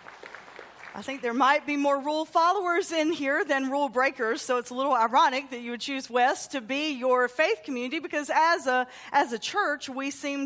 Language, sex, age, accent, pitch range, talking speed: English, female, 40-59, American, 235-295 Hz, 205 wpm